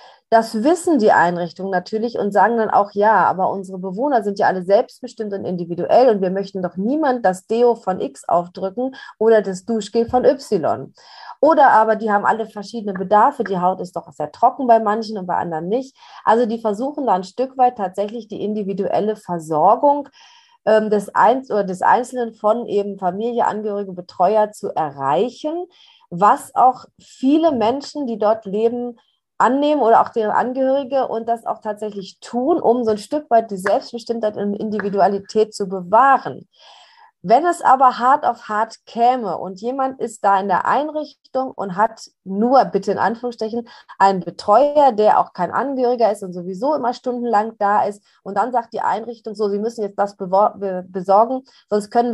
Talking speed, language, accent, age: 175 wpm, German, German, 30-49